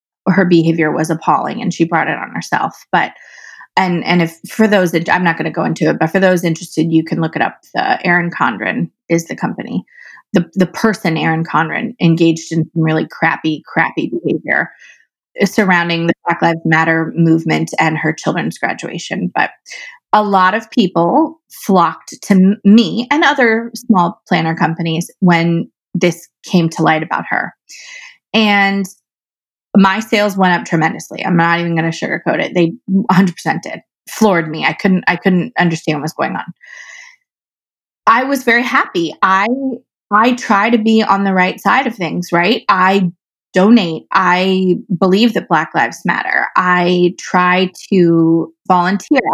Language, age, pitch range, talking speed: English, 20-39, 165-210 Hz, 165 wpm